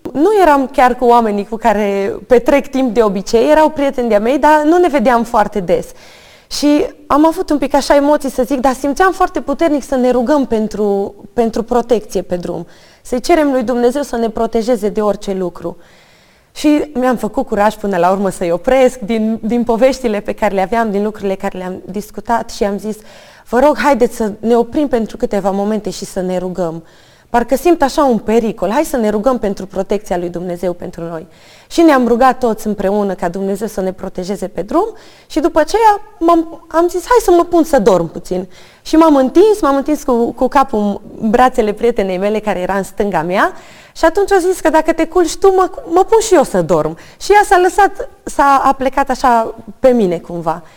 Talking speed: 200 wpm